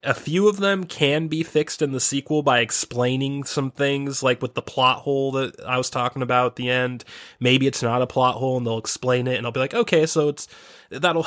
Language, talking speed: English, 240 wpm